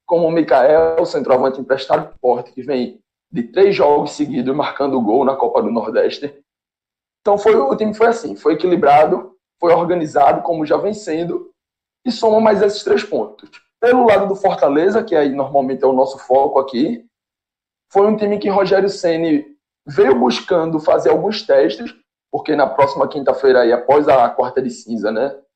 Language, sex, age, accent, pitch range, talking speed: Portuguese, male, 20-39, Brazilian, 160-235 Hz, 170 wpm